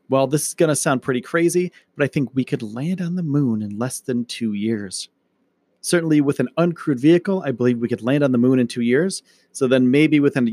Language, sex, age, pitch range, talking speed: English, male, 40-59, 120-155 Hz, 245 wpm